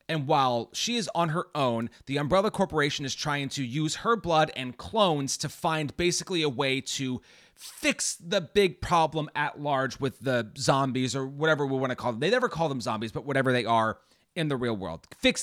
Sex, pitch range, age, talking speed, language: male, 130-175 Hz, 30-49, 210 wpm, English